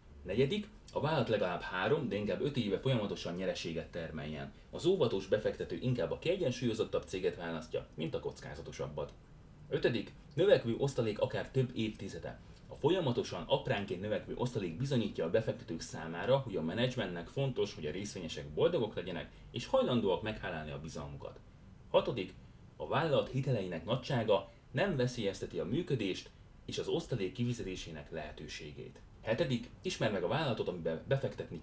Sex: male